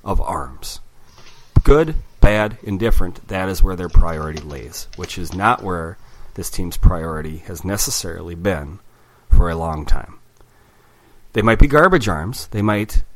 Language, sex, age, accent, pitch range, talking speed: English, male, 30-49, American, 80-100 Hz, 145 wpm